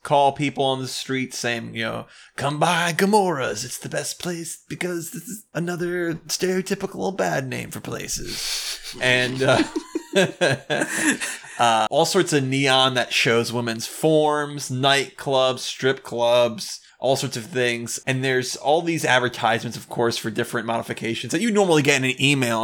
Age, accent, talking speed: 20-39, American, 155 wpm